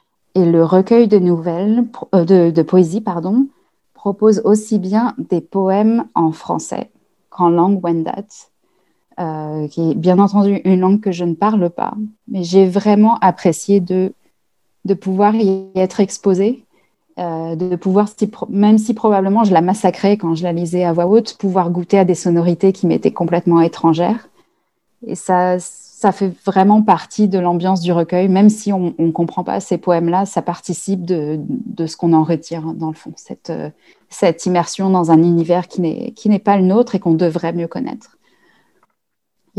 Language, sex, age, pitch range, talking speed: French, female, 20-39, 175-210 Hz, 175 wpm